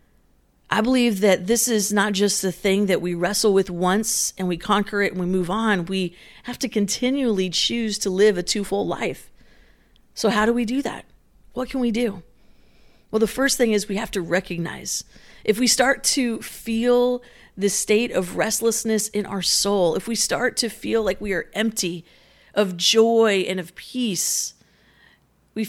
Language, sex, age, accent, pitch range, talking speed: English, female, 40-59, American, 185-230 Hz, 180 wpm